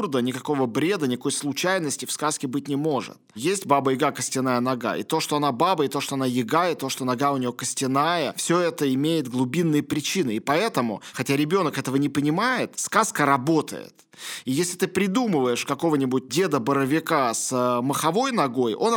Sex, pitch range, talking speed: male, 140-175 Hz, 170 wpm